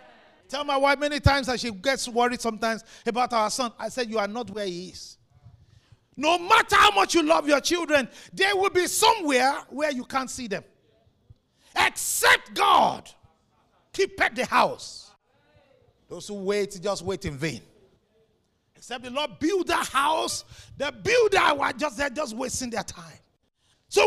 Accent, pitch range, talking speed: Nigerian, 220-345 Hz, 165 wpm